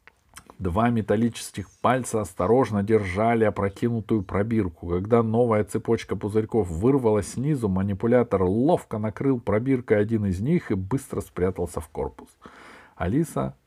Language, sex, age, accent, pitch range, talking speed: Russian, male, 50-69, native, 95-125 Hz, 115 wpm